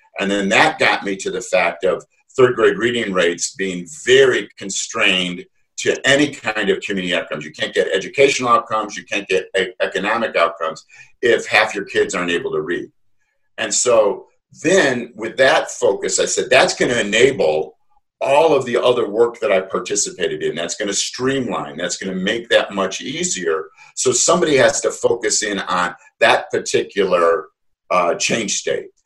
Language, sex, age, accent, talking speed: English, male, 50-69, American, 175 wpm